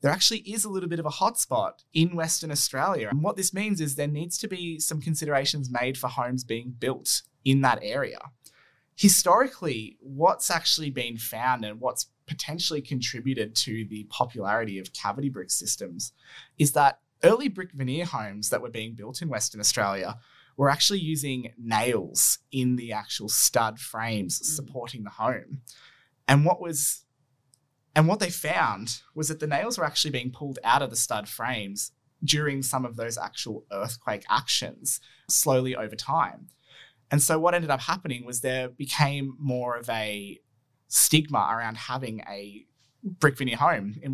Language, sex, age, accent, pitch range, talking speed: English, male, 20-39, Australian, 120-155 Hz, 165 wpm